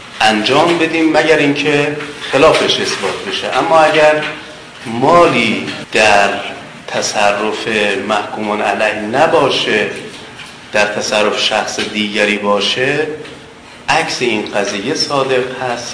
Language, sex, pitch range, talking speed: Persian, male, 105-140 Hz, 95 wpm